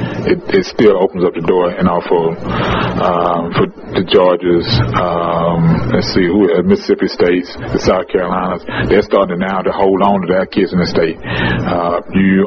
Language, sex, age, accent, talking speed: English, male, 30-49, American, 185 wpm